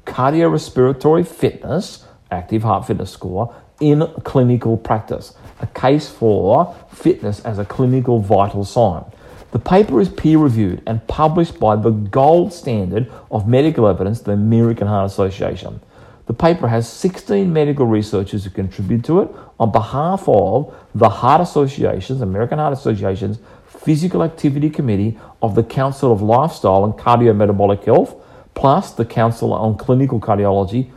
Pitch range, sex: 105-145 Hz, male